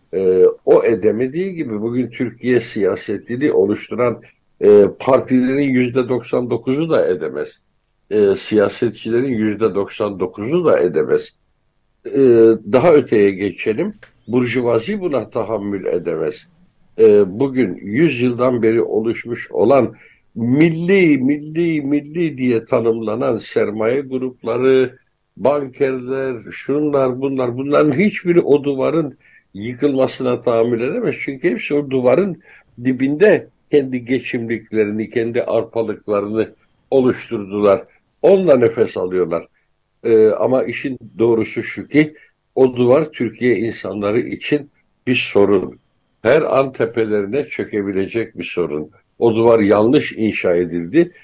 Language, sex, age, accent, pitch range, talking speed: Turkish, male, 60-79, native, 115-150 Hz, 100 wpm